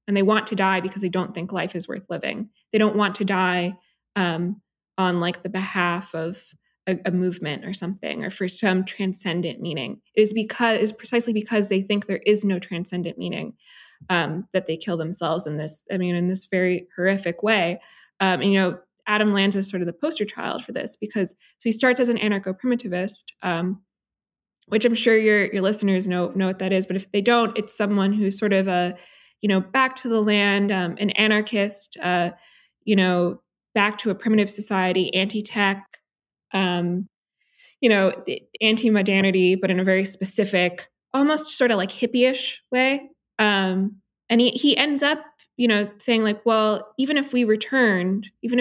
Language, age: English, 20-39